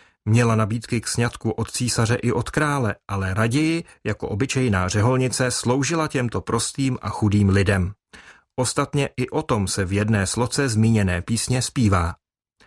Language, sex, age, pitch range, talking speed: Czech, male, 30-49, 105-130 Hz, 145 wpm